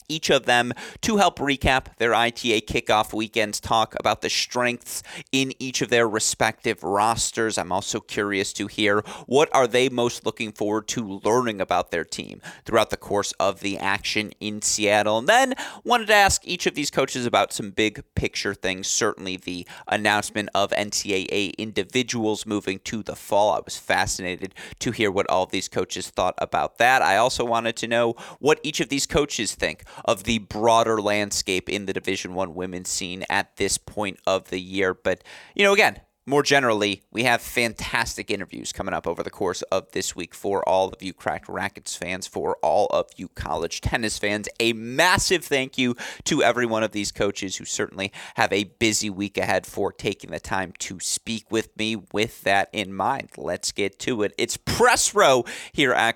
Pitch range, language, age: 100-125 Hz, English, 30-49